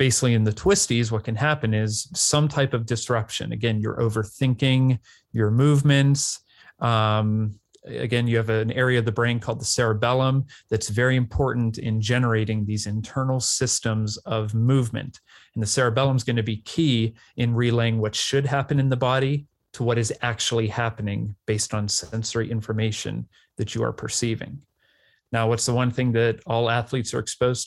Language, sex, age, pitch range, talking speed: English, male, 30-49, 110-125 Hz, 170 wpm